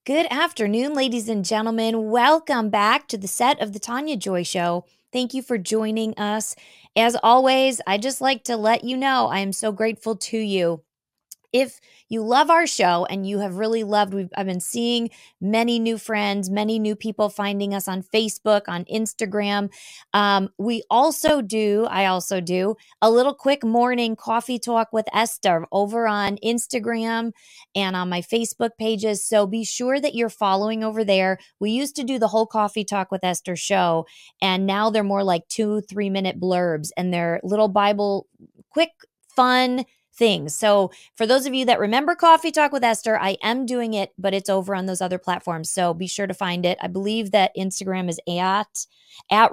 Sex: female